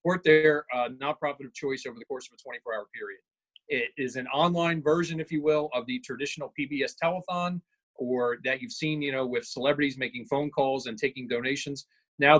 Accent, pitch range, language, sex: American, 130-160 Hz, English, male